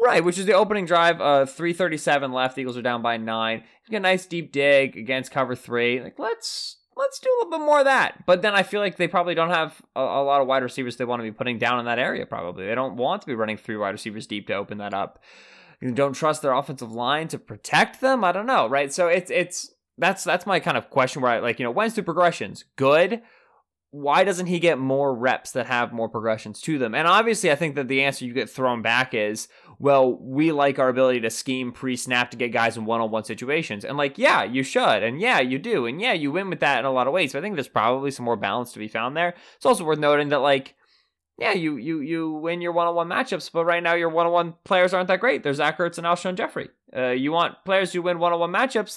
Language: English